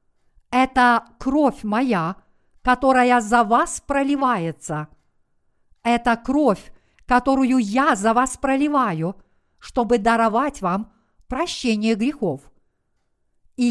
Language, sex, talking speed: Russian, female, 90 wpm